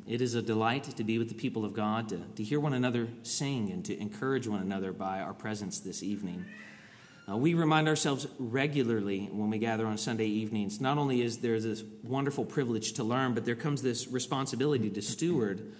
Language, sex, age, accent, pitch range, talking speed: English, male, 30-49, American, 115-145 Hz, 205 wpm